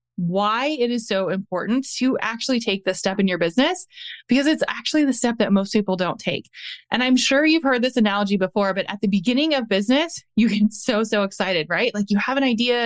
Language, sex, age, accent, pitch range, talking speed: English, female, 20-39, American, 200-260 Hz, 225 wpm